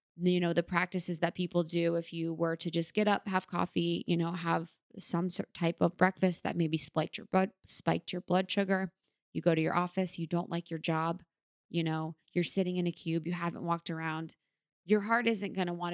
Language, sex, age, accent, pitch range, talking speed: English, female, 20-39, American, 170-200 Hz, 220 wpm